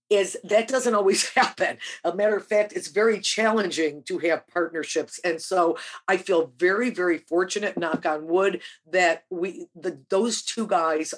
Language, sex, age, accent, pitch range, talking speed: English, female, 50-69, American, 165-215 Hz, 165 wpm